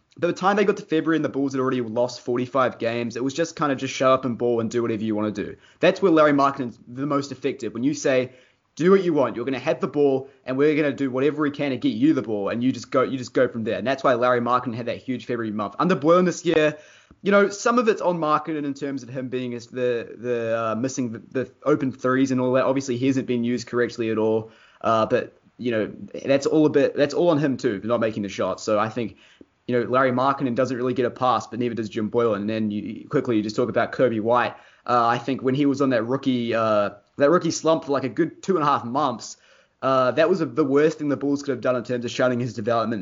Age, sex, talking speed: 20-39, male, 285 wpm